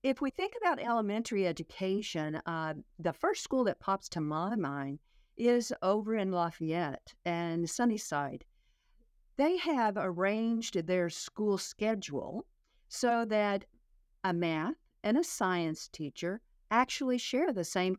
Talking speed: 130 wpm